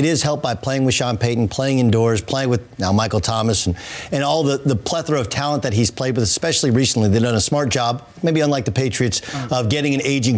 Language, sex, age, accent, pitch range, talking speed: English, male, 50-69, American, 120-150 Hz, 245 wpm